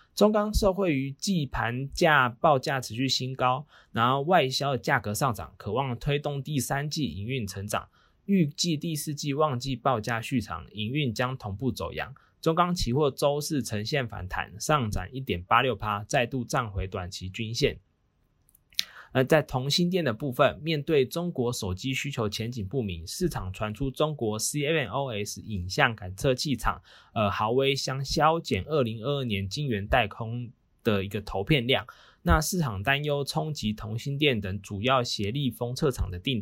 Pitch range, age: 110-150 Hz, 20-39